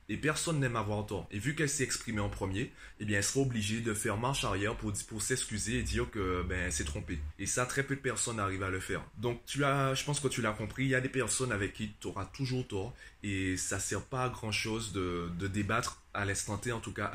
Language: French